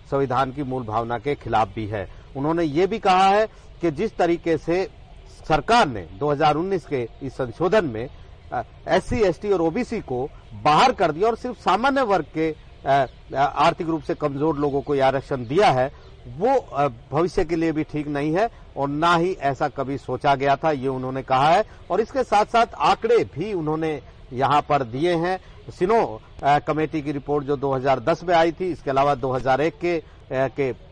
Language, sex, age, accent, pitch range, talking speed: Hindi, male, 50-69, native, 135-170 Hz, 180 wpm